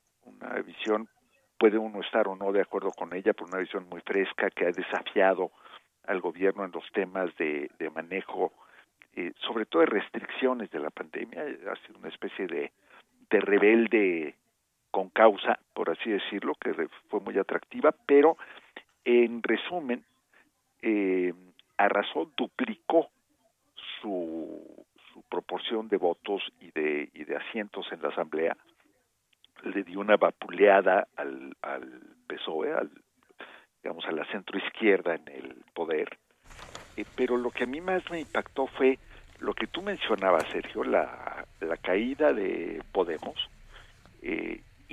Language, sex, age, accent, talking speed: Spanish, male, 50-69, Mexican, 140 wpm